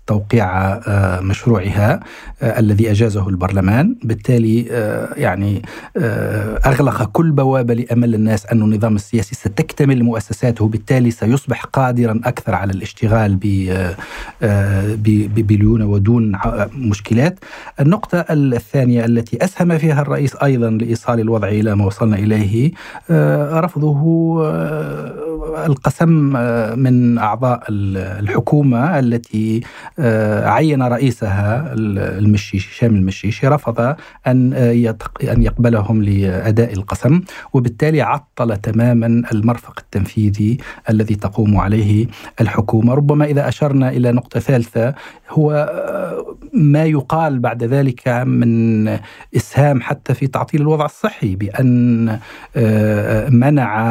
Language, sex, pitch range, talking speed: Arabic, male, 110-135 Hz, 95 wpm